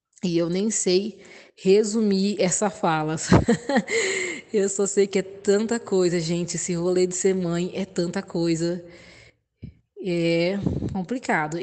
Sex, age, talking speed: female, 20-39, 130 wpm